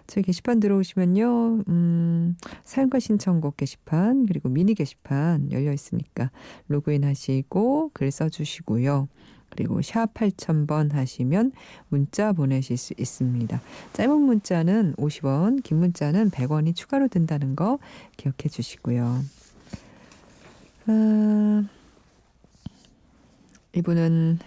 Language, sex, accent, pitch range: Korean, female, native, 140-195 Hz